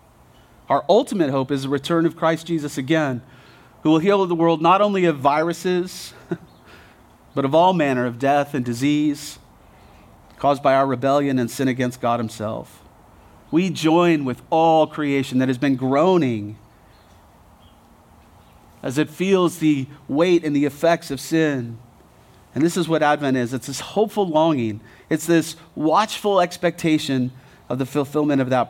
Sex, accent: male, American